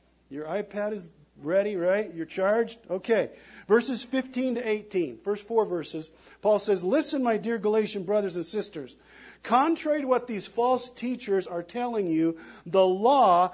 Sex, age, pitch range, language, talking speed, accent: male, 50-69, 155-230 Hz, English, 155 wpm, American